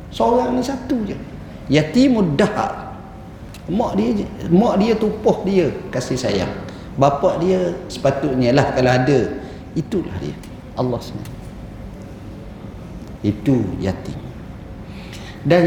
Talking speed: 100 wpm